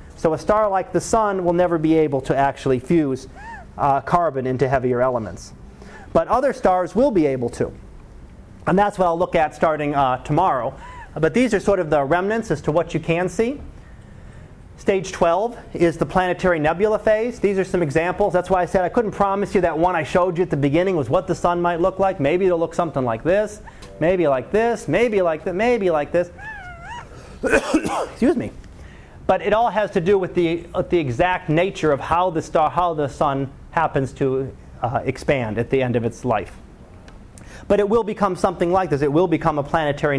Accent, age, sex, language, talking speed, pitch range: American, 30-49, male, English, 205 wpm, 145-195 Hz